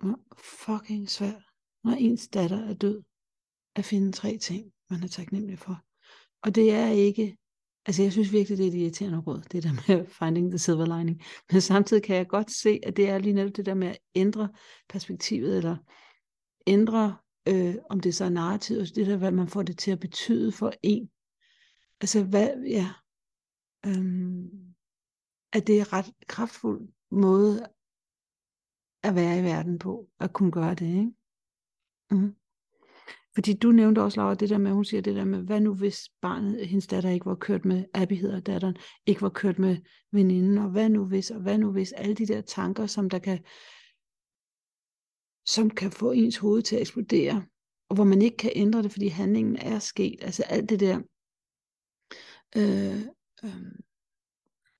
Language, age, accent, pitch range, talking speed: Danish, 60-79, native, 185-215 Hz, 180 wpm